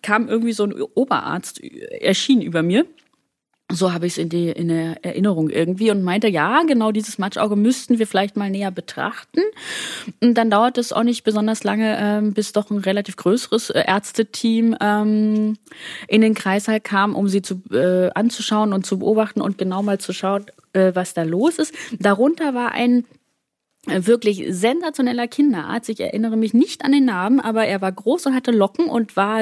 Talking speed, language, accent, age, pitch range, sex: 175 wpm, German, German, 20-39, 190-235 Hz, female